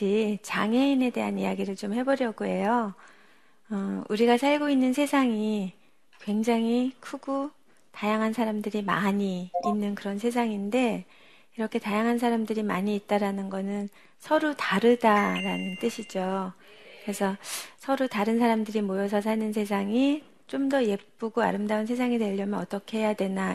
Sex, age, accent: female, 40-59, native